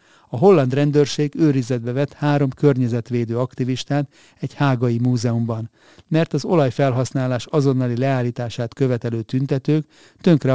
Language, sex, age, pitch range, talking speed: Hungarian, male, 60-79, 120-145 Hz, 110 wpm